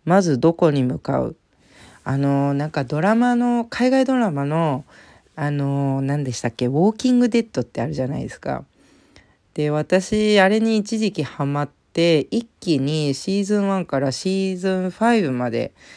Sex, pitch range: female, 135-210 Hz